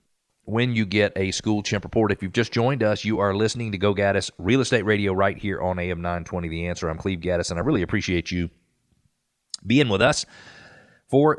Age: 40-59